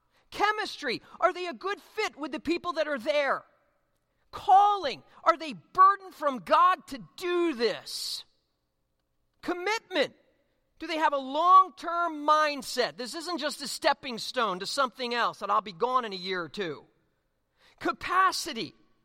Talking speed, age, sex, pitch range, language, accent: 150 wpm, 40-59, male, 190-305 Hz, English, American